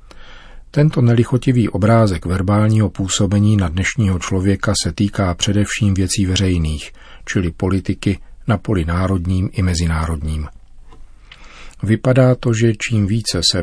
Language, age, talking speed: Czech, 40-59, 115 wpm